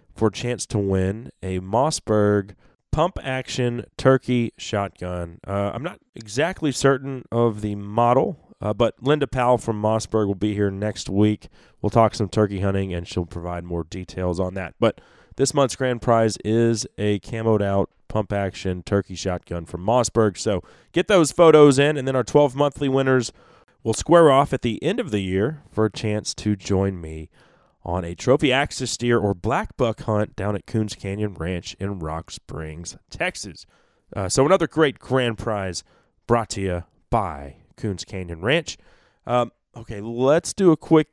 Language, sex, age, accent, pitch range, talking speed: English, male, 20-39, American, 100-125 Hz, 170 wpm